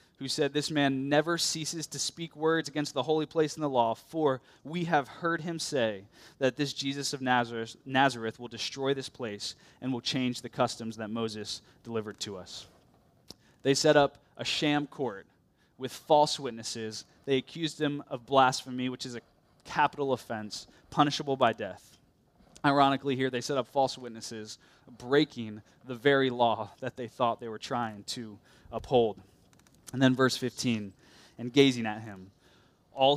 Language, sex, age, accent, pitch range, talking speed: English, male, 20-39, American, 115-145 Hz, 165 wpm